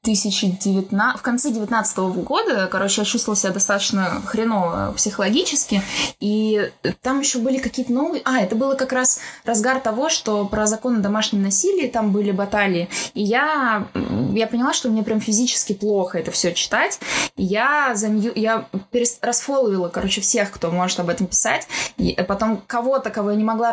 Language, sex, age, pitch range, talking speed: Russian, female, 20-39, 195-235 Hz, 160 wpm